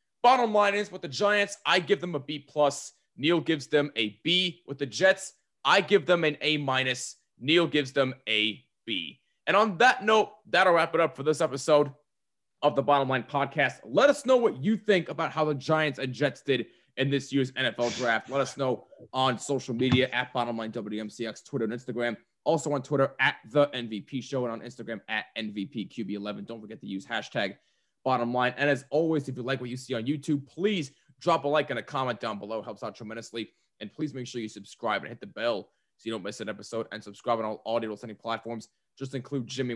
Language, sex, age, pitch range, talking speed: English, male, 20-39, 115-150 Hz, 220 wpm